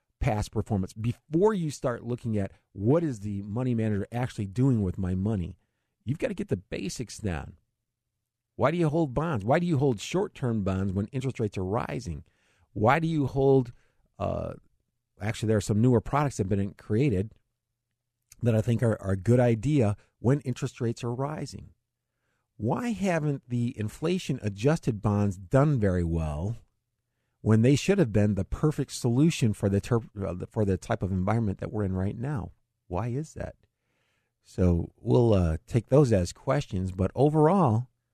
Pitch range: 105-130 Hz